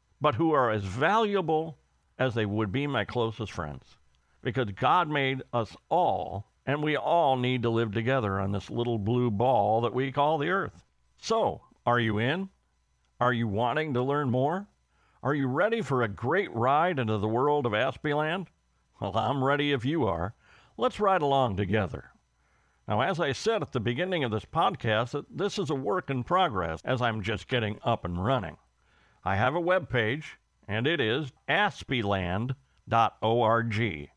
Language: English